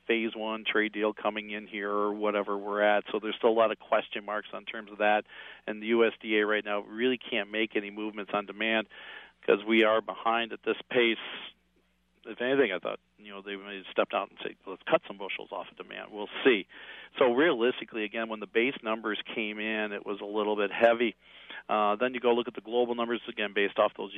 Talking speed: 230 wpm